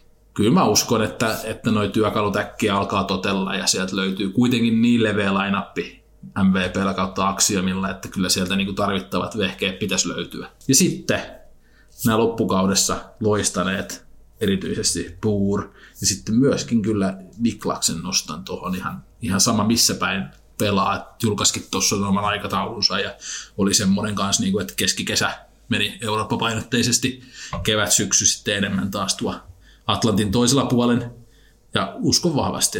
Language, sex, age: Finnish, male, 20-39